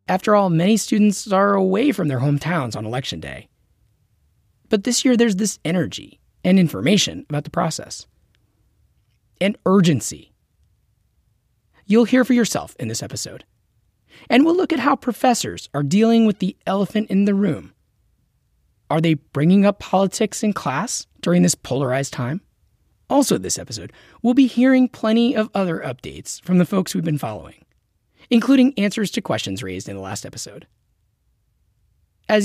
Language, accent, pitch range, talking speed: English, American, 125-210 Hz, 155 wpm